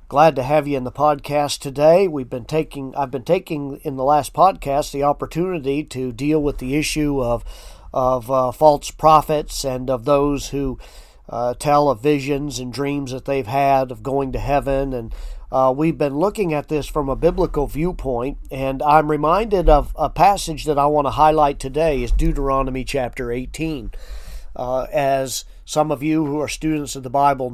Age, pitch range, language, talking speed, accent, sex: 40-59, 130-150 Hz, English, 185 wpm, American, male